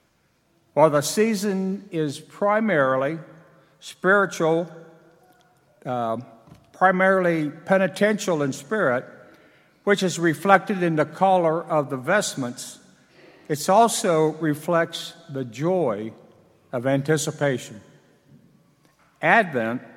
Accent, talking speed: American, 85 wpm